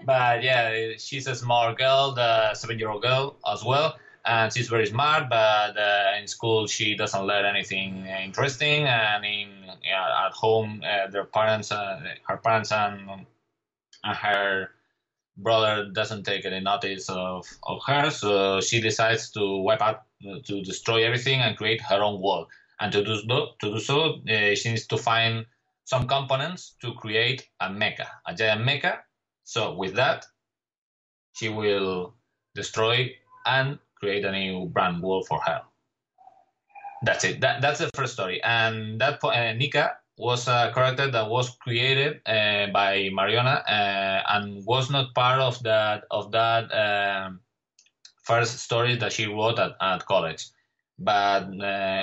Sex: male